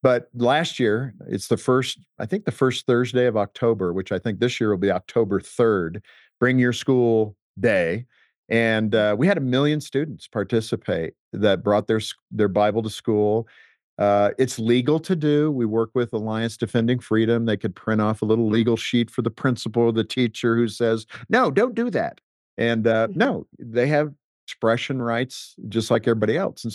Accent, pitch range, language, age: American, 105-135 Hz, English, 50-69